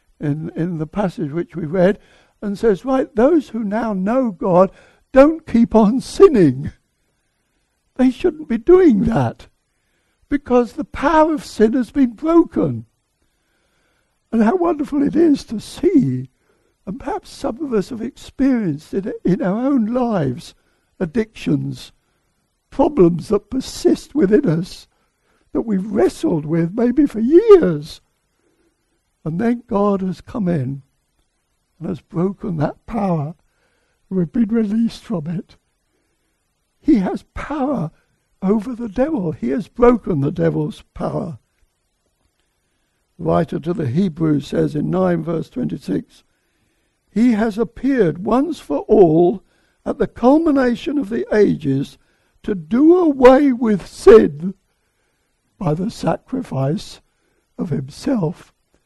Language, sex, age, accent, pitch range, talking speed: English, male, 60-79, British, 175-265 Hz, 125 wpm